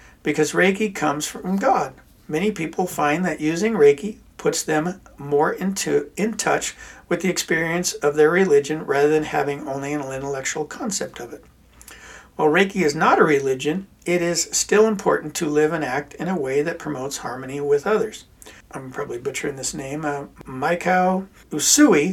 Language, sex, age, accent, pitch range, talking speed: English, male, 60-79, American, 145-180 Hz, 165 wpm